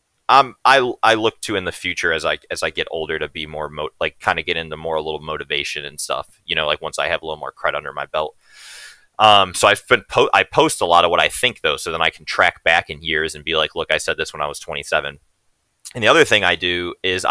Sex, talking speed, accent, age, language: male, 280 wpm, American, 30-49, English